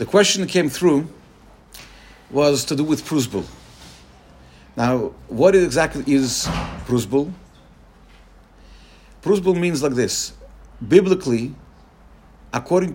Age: 50-69